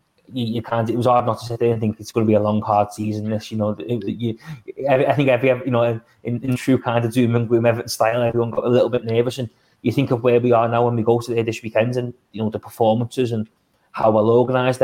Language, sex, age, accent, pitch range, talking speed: English, male, 20-39, British, 105-120 Hz, 285 wpm